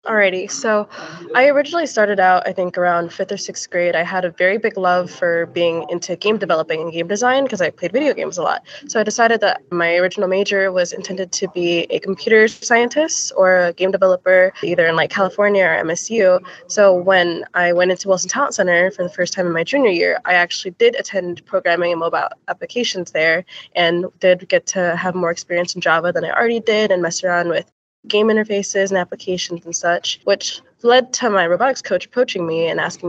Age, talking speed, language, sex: 20-39, 210 wpm, English, female